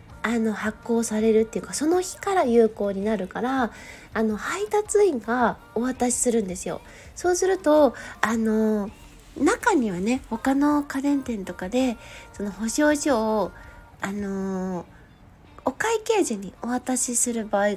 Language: Japanese